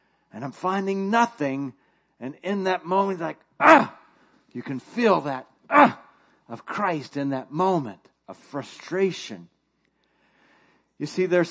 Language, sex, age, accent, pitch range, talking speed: English, male, 50-69, American, 150-195 Hz, 130 wpm